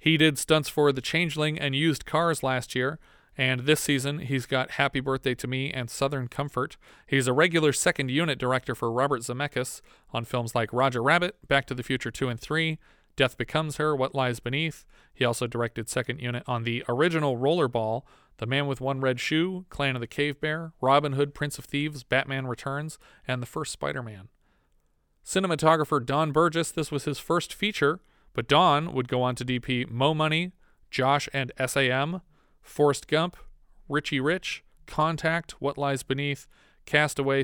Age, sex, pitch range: 40-59, male, 125-150 Hz